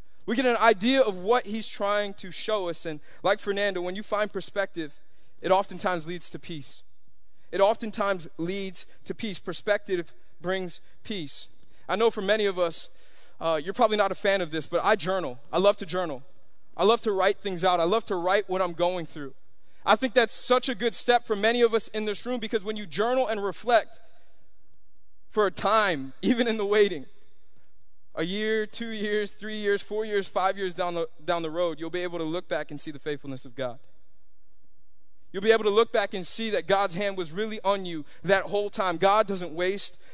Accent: American